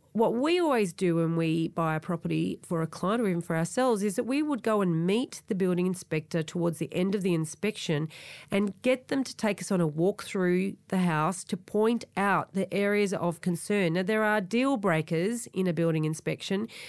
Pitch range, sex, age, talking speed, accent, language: 165-215 Hz, female, 40-59, 215 wpm, Australian, English